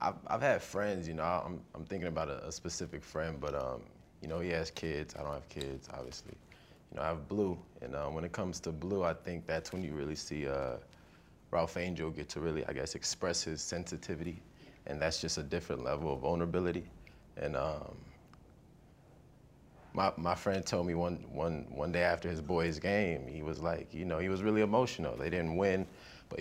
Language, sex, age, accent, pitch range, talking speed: English, male, 20-39, American, 80-95 Hz, 210 wpm